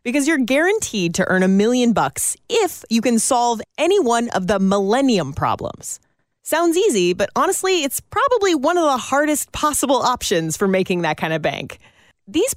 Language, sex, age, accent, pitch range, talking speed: English, female, 30-49, American, 185-280 Hz, 175 wpm